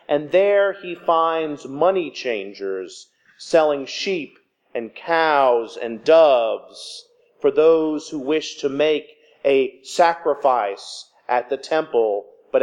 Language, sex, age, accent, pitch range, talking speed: English, male, 40-59, American, 135-210 Hz, 115 wpm